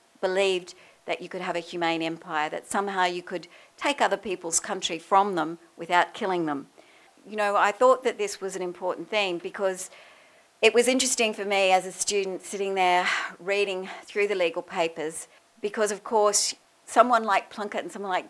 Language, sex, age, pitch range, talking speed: English, female, 50-69, 165-195 Hz, 185 wpm